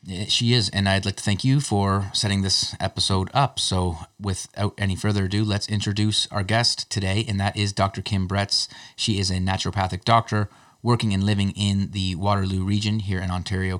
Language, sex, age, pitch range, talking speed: English, male, 30-49, 95-110 Hz, 190 wpm